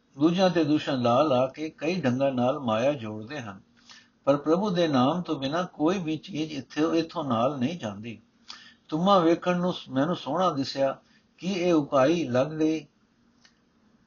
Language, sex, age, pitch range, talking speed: Punjabi, male, 60-79, 140-190 Hz, 165 wpm